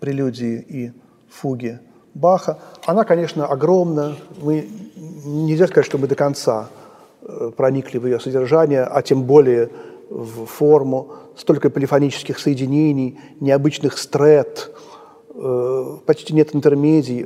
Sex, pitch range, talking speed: male, 140-195 Hz, 110 wpm